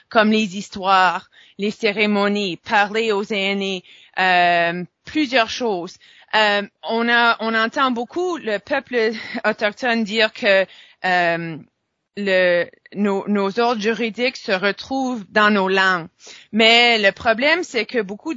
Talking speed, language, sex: 125 wpm, French, female